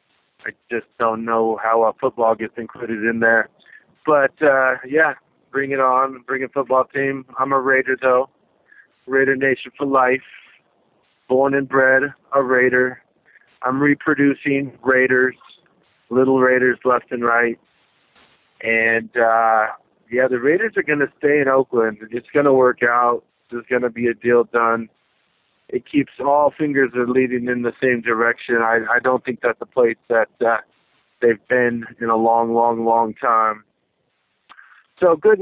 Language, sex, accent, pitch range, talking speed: English, male, American, 115-135 Hz, 165 wpm